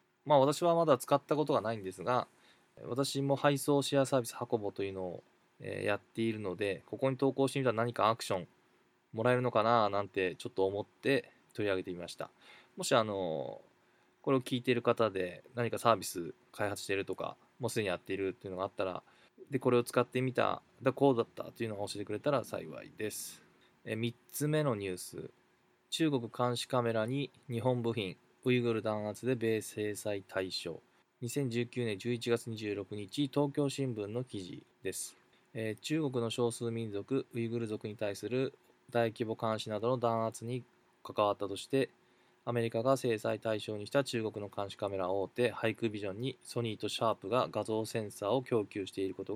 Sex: male